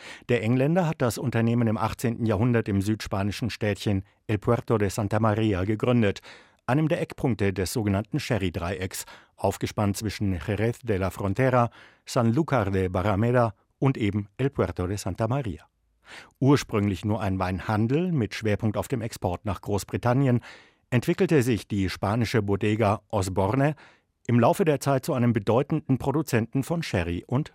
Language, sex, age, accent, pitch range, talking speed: German, male, 60-79, German, 100-125 Hz, 150 wpm